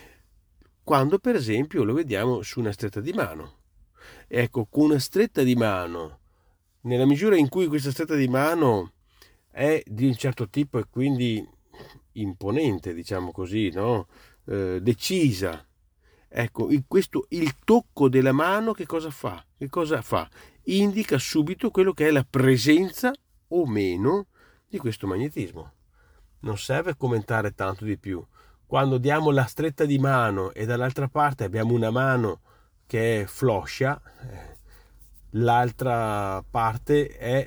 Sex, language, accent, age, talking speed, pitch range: male, Italian, native, 40-59, 135 wpm, 105-145 Hz